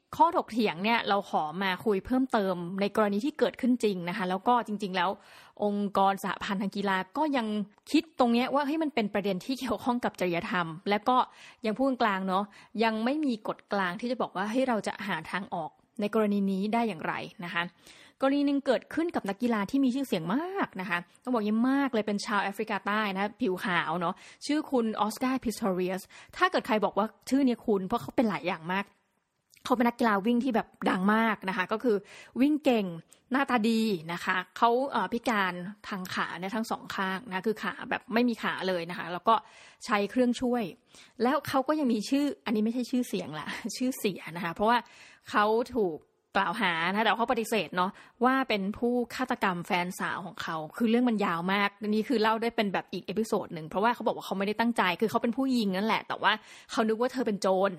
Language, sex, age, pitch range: Thai, female, 20-39, 195-245 Hz